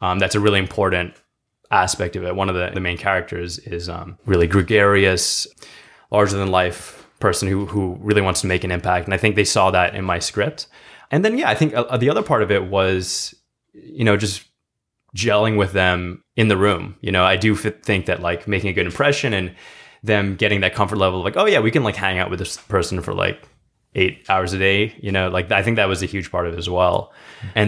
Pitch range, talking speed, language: 90-105 Hz, 240 wpm, English